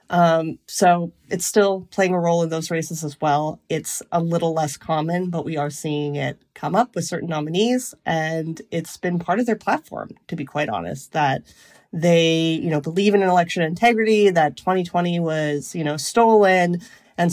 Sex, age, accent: female, 30-49, American